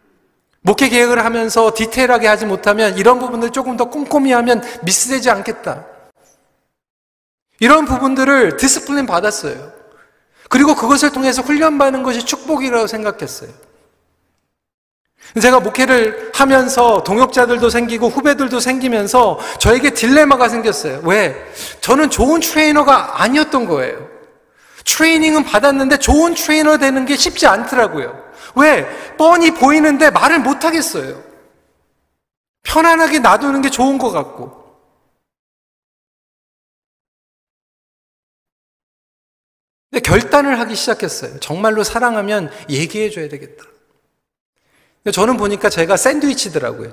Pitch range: 220-295 Hz